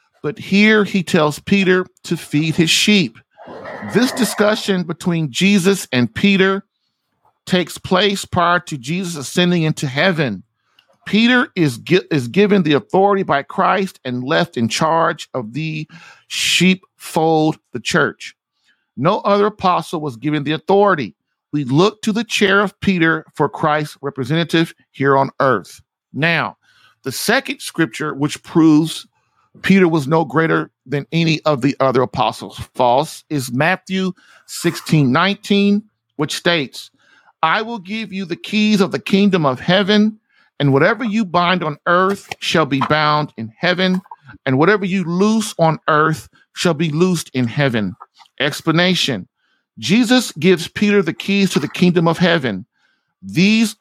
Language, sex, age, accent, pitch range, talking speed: English, male, 50-69, American, 150-195 Hz, 145 wpm